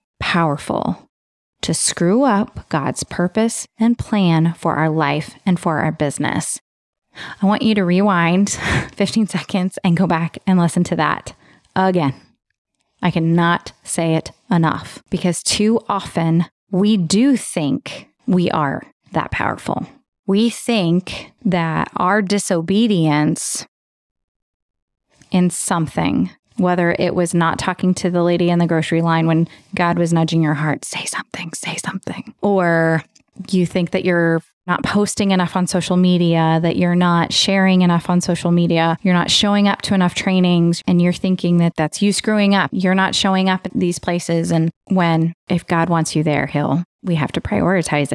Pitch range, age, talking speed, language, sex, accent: 165-190 Hz, 20-39, 160 wpm, English, female, American